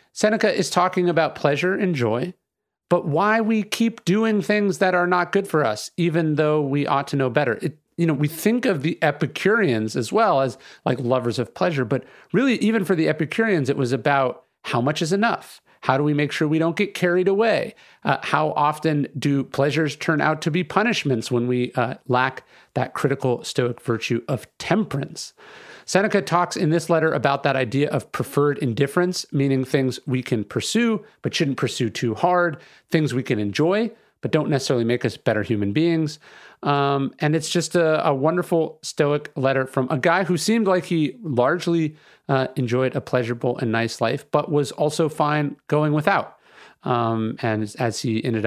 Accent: American